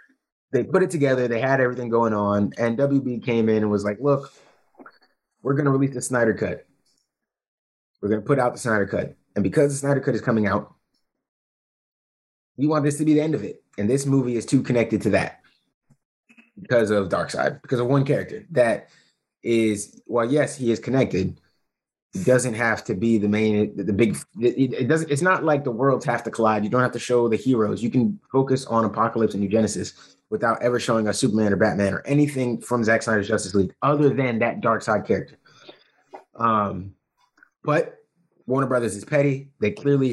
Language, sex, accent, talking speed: English, male, American, 195 wpm